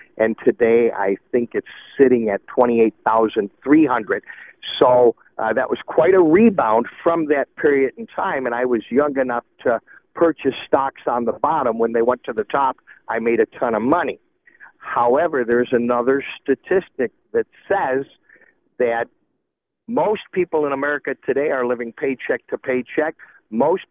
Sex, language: male, English